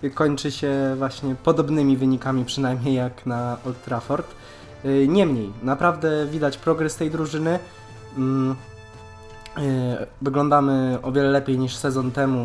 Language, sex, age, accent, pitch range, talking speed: Polish, male, 20-39, native, 120-140 Hz, 110 wpm